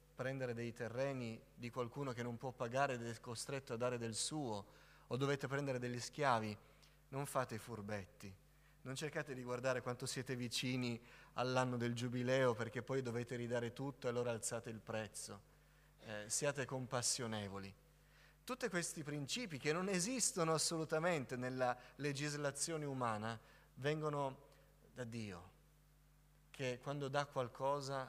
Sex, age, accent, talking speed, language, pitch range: male, 30-49, native, 135 wpm, Italian, 120-150 Hz